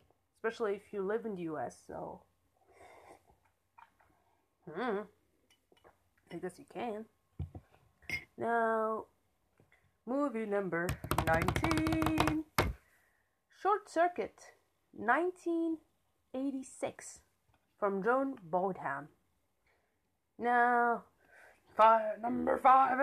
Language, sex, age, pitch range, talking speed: English, female, 30-49, 195-265 Hz, 70 wpm